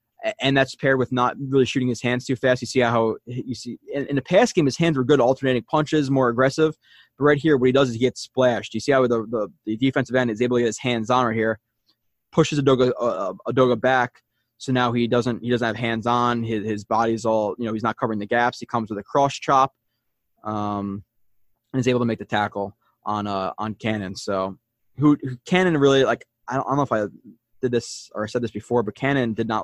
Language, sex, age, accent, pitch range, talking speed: English, male, 20-39, American, 105-130 Hz, 245 wpm